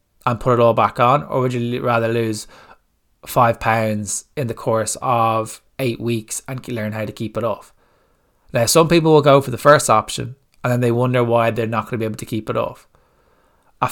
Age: 20-39